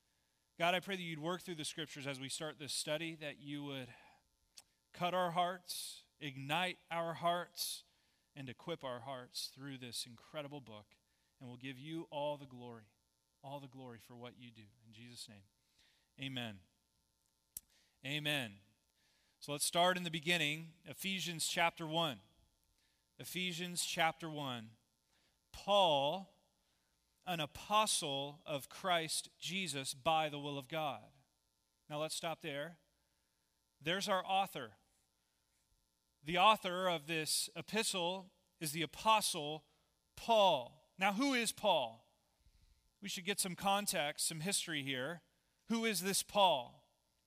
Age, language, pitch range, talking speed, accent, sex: 30-49, English, 120-175 Hz, 135 wpm, American, male